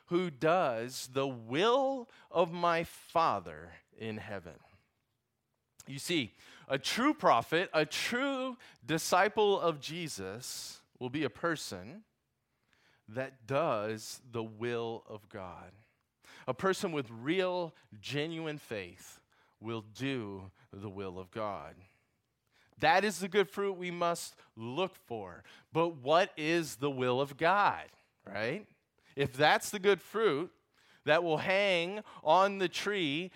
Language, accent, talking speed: English, American, 125 wpm